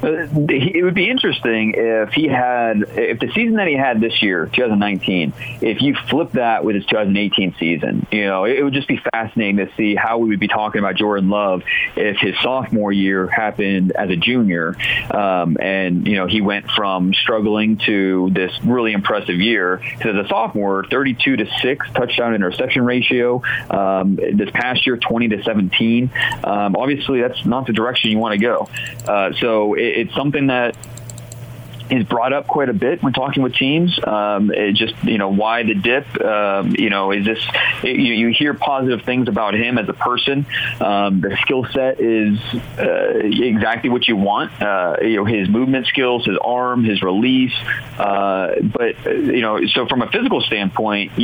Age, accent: 40-59, American